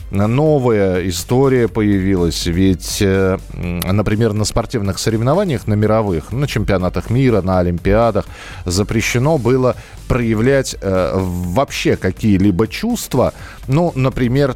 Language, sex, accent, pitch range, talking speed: Russian, male, native, 95-135 Hz, 95 wpm